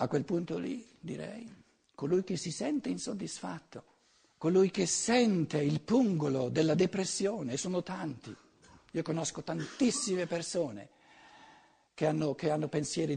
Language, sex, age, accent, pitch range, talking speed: Italian, male, 60-79, native, 150-205 Hz, 130 wpm